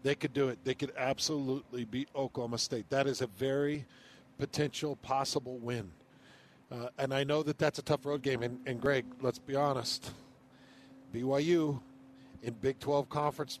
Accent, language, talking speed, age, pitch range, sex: American, English, 170 wpm, 50-69, 130-155 Hz, male